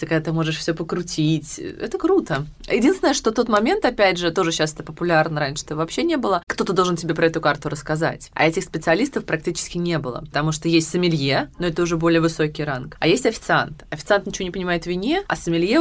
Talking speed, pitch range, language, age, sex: 215 wpm, 155-185 Hz, Russian, 20-39, female